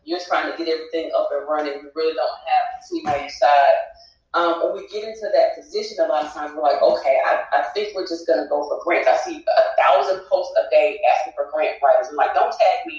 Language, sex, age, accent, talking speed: English, female, 30-49, American, 260 wpm